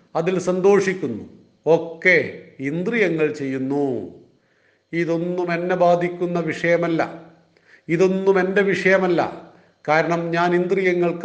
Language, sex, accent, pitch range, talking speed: Malayalam, male, native, 165-195 Hz, 80 wpm